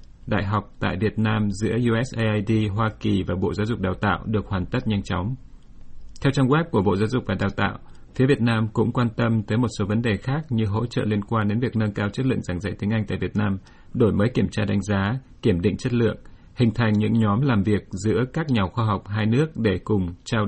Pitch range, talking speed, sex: 100-120 Hz, 250 wpm, male